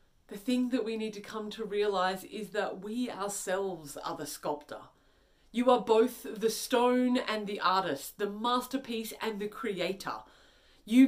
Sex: female